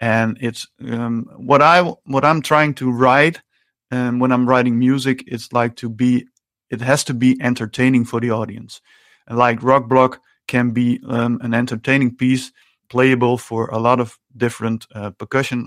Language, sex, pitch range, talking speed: Polish, male, 115-130 Hz, 170 wpm